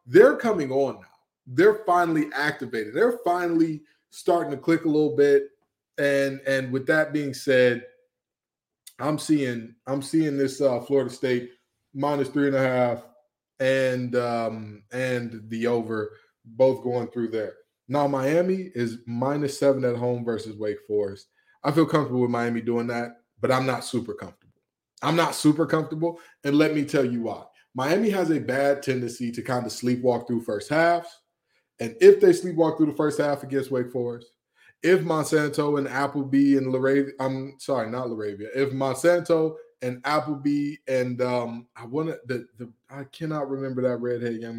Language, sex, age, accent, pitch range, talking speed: English, male, 20-39, American, 120-160 Hz, 165 wpm